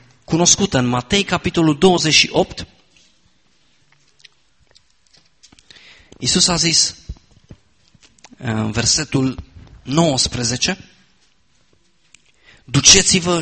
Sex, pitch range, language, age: male, 130-170 Hz, Romanian, 40-59